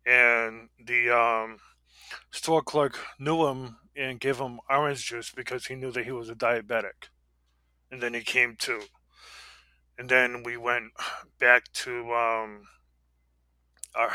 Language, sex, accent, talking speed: English, male, American, 140 wpm